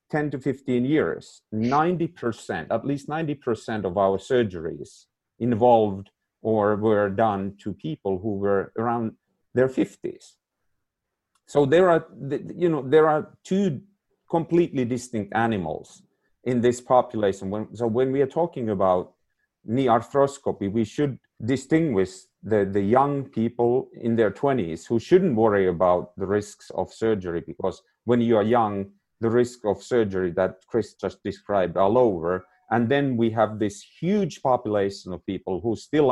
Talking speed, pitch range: 150 wpm, 100-130 Hz